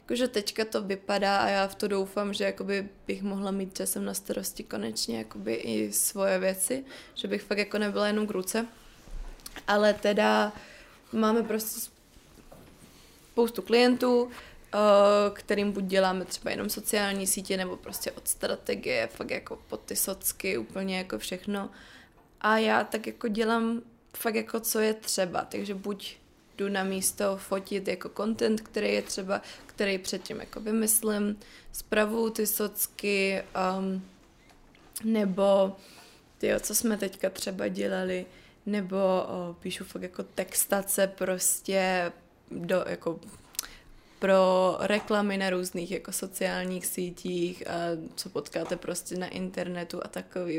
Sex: female